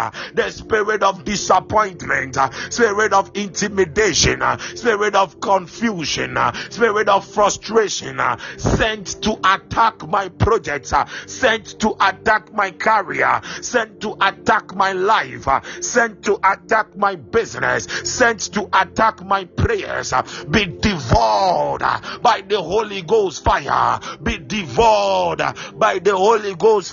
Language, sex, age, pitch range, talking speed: English, male, 50-69, 195-220 Hz, 125 wpm